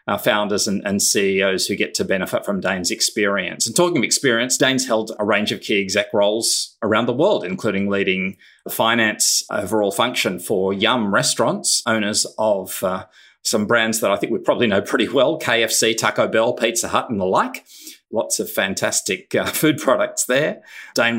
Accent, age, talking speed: Australian, 30-49, 185 wpm